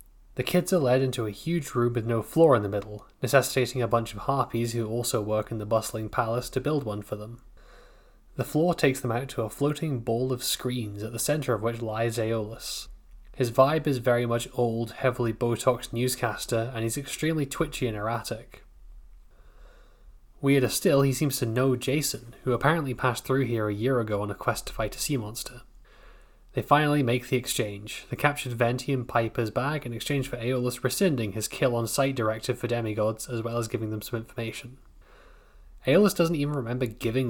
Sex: male